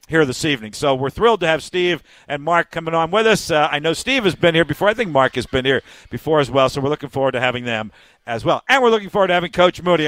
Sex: male